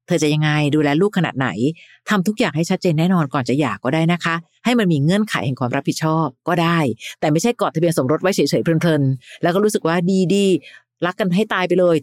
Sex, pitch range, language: female, 150-200 Hz, Thai